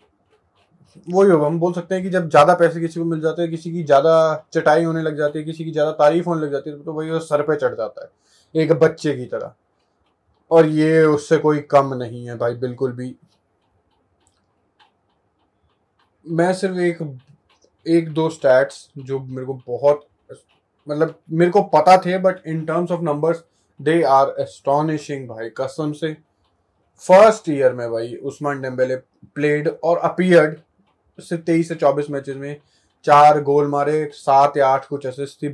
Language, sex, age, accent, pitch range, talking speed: Hindi, male, 20-39, native, 135-165 Hz, 170 wpm